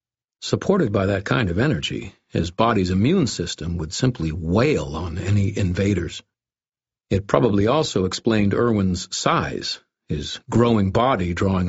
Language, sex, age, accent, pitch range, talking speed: English, male, 50-69, American, 90-115 Hz, 135 wpm